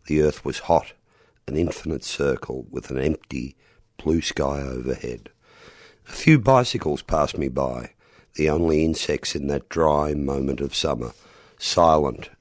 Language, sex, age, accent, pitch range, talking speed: English, male, 50-69, Australian, 70-90 Hz, 140 wpm